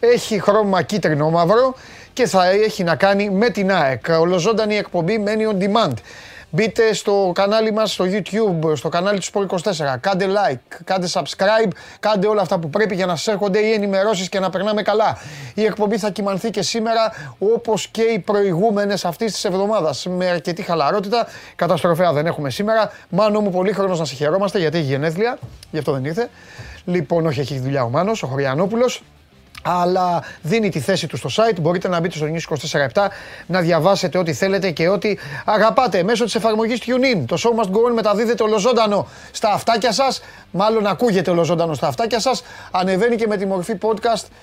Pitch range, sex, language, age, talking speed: 175-220 Hz, male, Greek, 30-49, 180 wpm